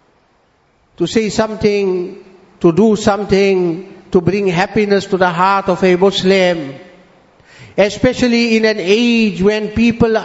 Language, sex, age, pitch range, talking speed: English, male, 50-69, 185-235 Hz, 125 wpm